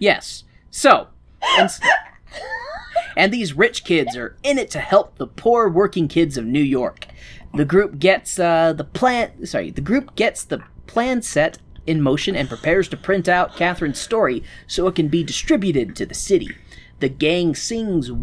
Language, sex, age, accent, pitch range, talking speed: English, male, 30-49, American, 155-225 Hz, 175 wpm